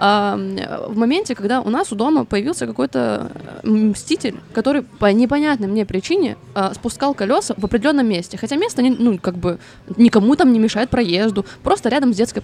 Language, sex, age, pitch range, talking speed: Russian, female, 20-39, 195-270 Hz, 165 wpm